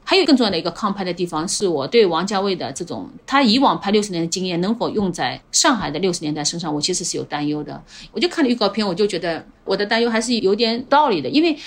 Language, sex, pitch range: Chinese, female, 180-260 Hz